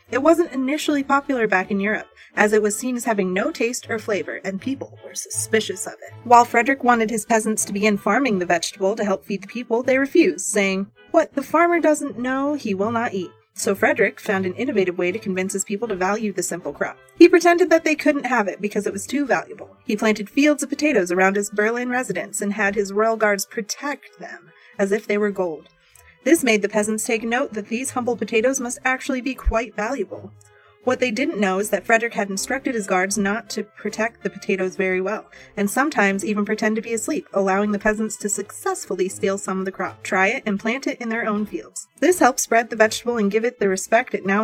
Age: 30-49